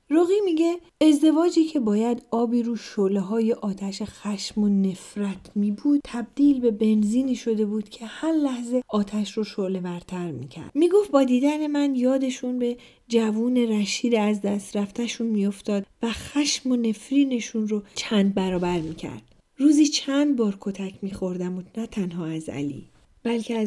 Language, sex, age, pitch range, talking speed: Persian, female, 40-59, 200-245 Hz, 140 wpm